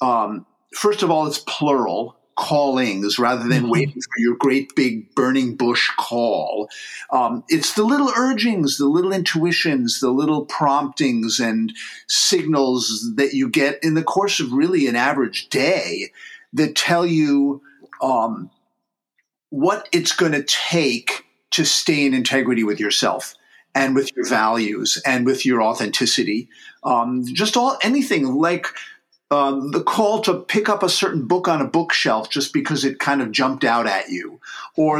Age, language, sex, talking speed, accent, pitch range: 50-69, English, male, 155 wpm, American, 130-185 Hz